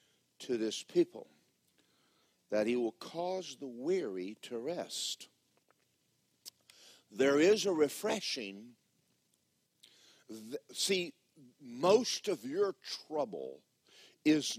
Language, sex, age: English, male, 50-69